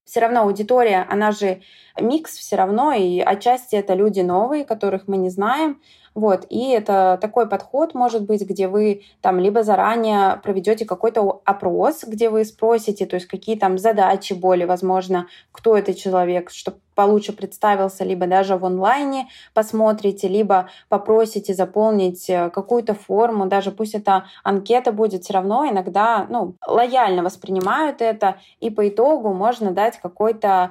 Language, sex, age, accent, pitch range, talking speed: Russian, female, 20-39, native, 190-220 Hz, 150 wpm